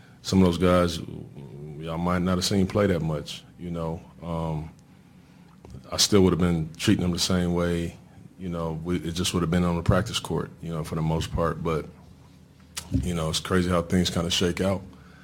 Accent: American